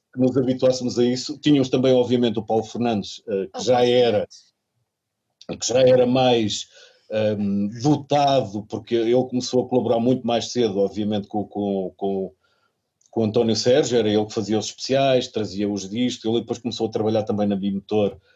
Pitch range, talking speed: 100-120 Hz, 155 wpm